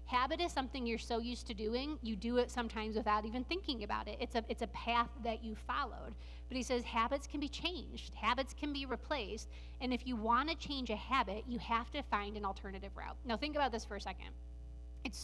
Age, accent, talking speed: 30-49, American, 230 wpm